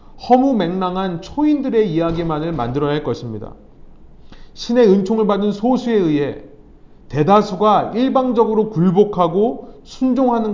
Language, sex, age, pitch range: Korean, male, 30-49, 165-230 Hz